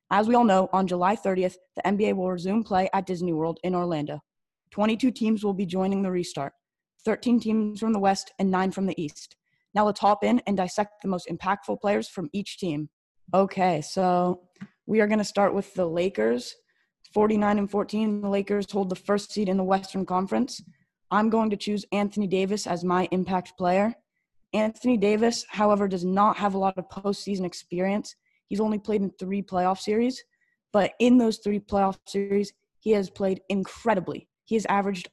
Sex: female